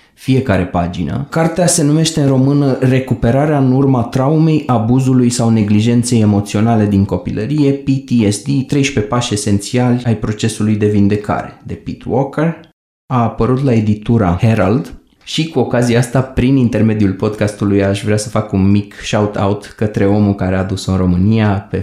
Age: 20-39